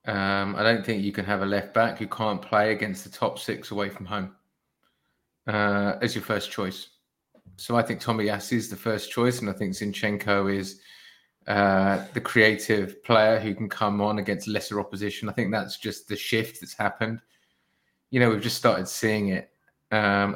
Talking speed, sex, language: 195 wpm, male, English